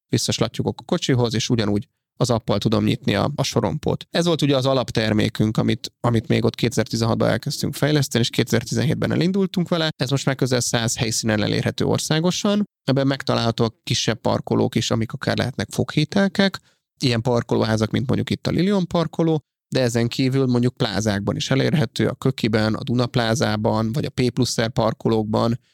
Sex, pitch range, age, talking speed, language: male, 115-140 Hz, 30-49, 160 wpm, Hungarian